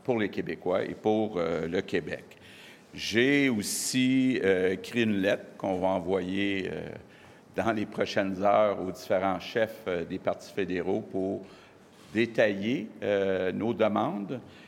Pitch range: 95-110 Hz